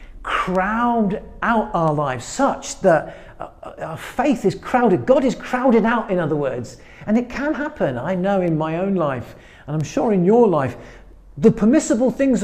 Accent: British